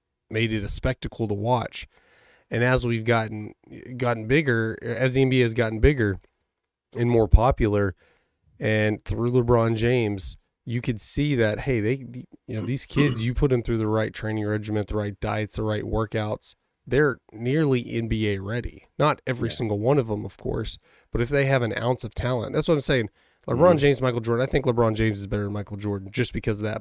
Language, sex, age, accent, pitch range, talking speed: English, male, 30-49, American, 105-125 Hz, 200 wpm